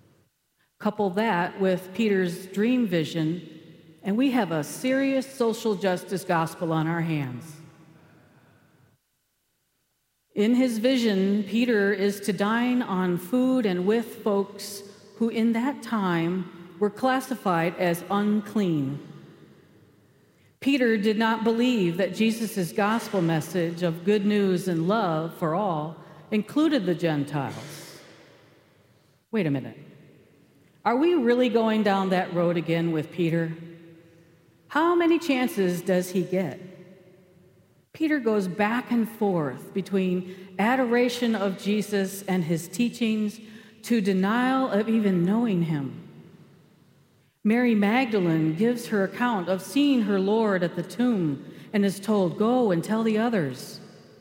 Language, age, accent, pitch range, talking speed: English, 50-69, American, 170-225 Hz, 125 wpm